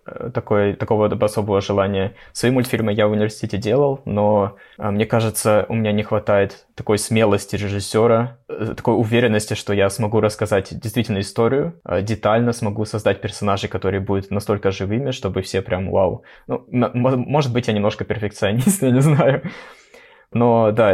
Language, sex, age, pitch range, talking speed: Russian, male, 20-39, 100-115 Hz, 150 wpm